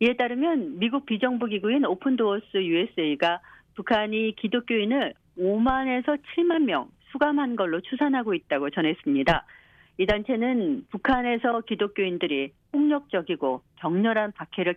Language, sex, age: Korean, female, 50-69